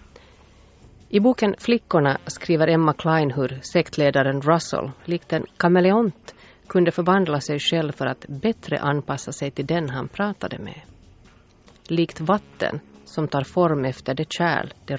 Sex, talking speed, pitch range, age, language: female, 140 wpm, 140-190 Hz, 30-49, Swedish